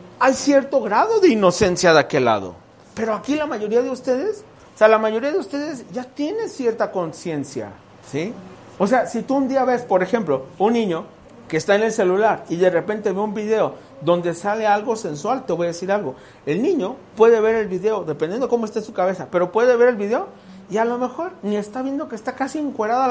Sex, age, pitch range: male, 40-59, 185-265 Hz